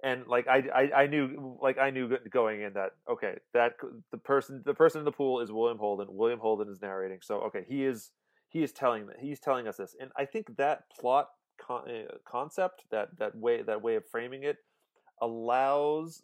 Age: 30-49